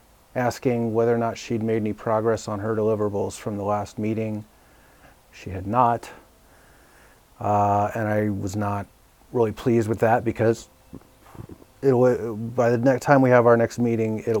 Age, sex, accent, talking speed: 30-49, male, American, 165 wpm